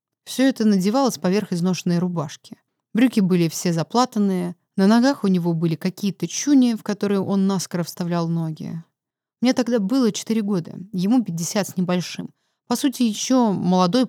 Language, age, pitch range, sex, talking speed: Russian, 20-39, 170-210 Hz, female, 155 wpm